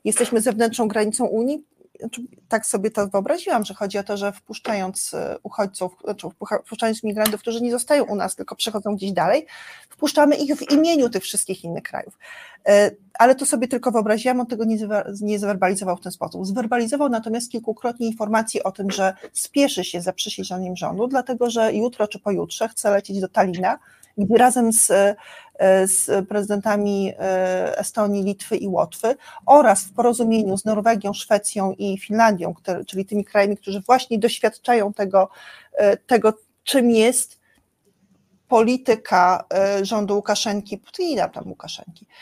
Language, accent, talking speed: Polish, native, 150 wpm